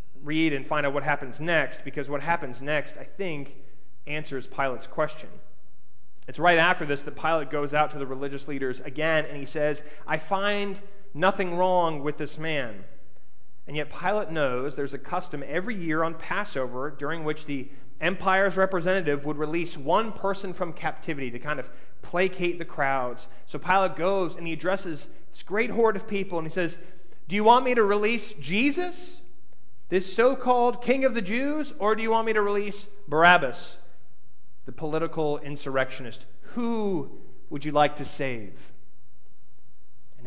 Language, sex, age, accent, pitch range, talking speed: English, male, 30-49, American, 140-195 Hz, 170 wpm